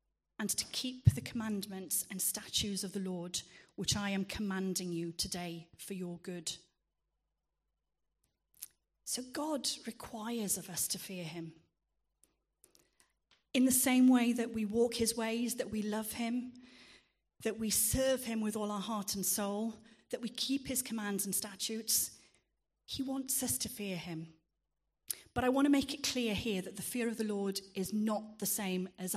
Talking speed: 170 wpm